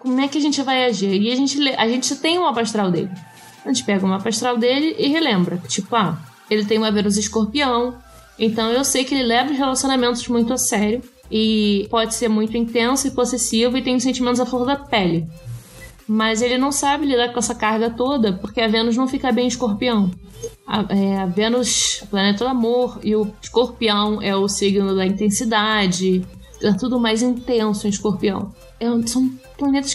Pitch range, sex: 200-250 Hz, female